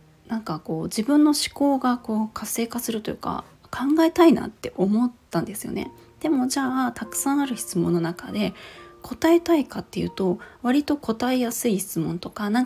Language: Japanese